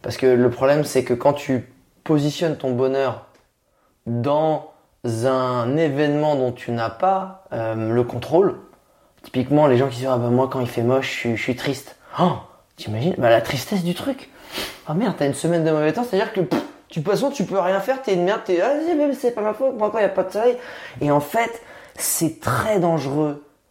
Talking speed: 210 wpm